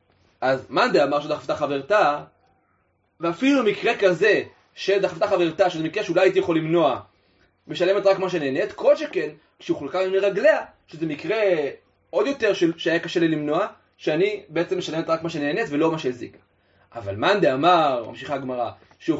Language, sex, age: Hebrew, male, 30-49